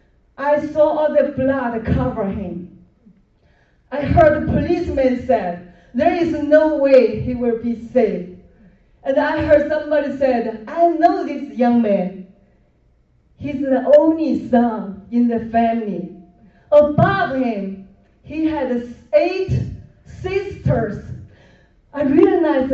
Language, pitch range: English, 220-310 Hz